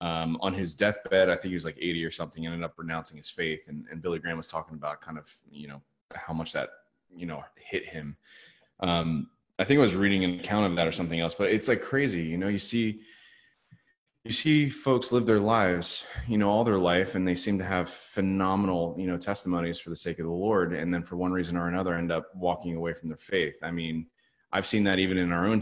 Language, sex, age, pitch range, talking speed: English, male, 20-39, 85-100 Hz, 250 wpm